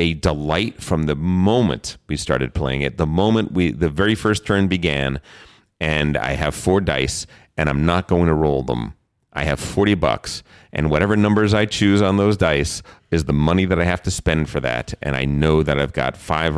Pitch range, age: 75-100 Hz, 40-59